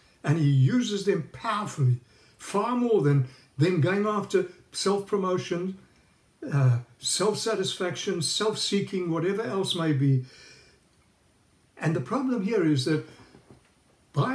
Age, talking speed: 60-79, 105 wpm